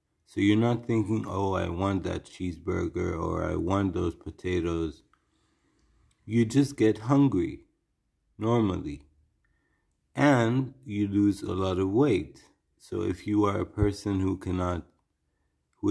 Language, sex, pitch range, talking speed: English, male, 90-110 Hz, 130 wpm